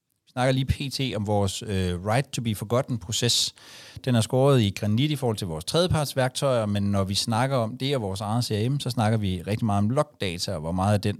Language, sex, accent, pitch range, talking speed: Danish, male, native, 100-125 Hz, 210 wpm